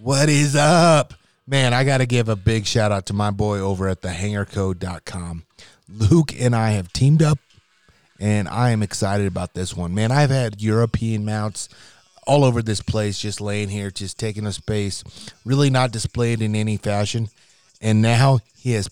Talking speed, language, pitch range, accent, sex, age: 180 wpm, English, 105-130 Hz, American, male, 30-49